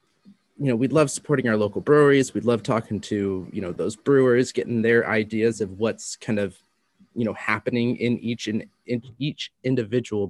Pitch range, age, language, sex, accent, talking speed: 110-130 Hz, 30-49, English, male, American, 185 wpm